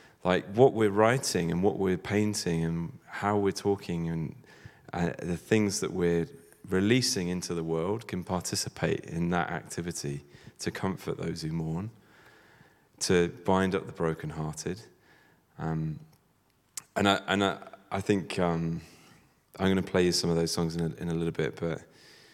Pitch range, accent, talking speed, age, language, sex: 85-100 Hz, British, 160 wpm, 30-49, English, male